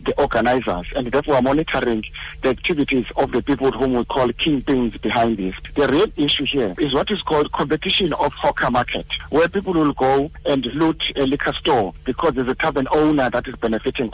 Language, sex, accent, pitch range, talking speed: English, male, South African, 125-145 Hz, 195 wpm